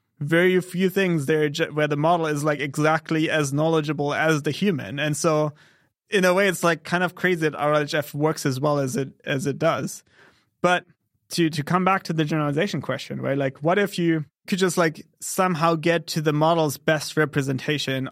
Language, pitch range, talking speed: English, 145-175 Hz, 195 wpm